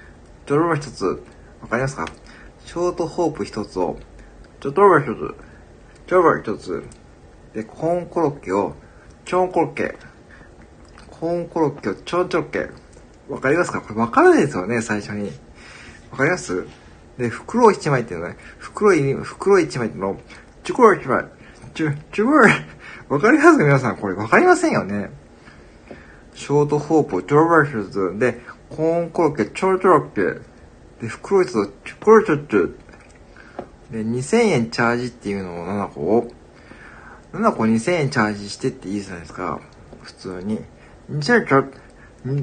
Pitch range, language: 110-180 Hz, Japanese